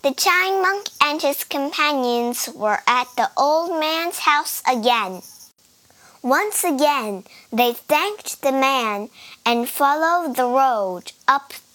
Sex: male